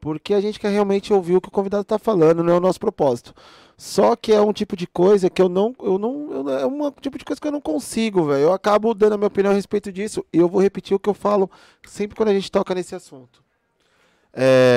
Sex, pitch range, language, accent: male, 155-210 Hz, Portuguese, Brazilian